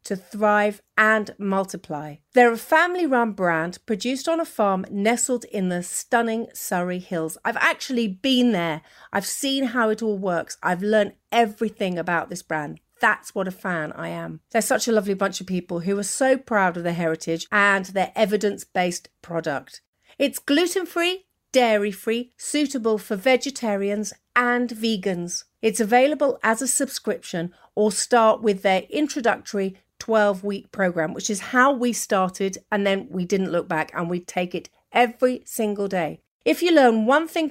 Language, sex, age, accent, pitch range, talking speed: English, female, 40-59, British, 185-245 Hz, 160 wpm